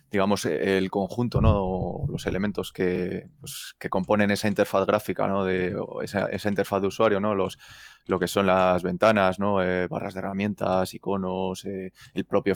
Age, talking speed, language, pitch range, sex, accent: 20-39, 175 wpm, Spanish, 90-100 Hz, male, Spanish